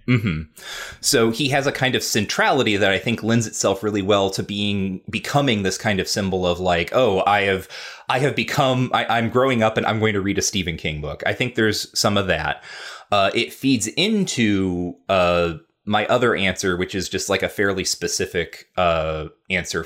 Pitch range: 90-115 Hz